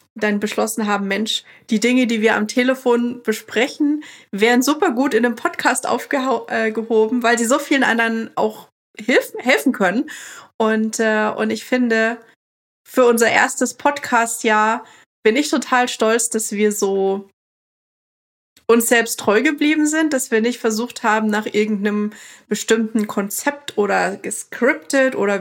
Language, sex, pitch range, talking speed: German, female, 210-250 Hz, 150 wpm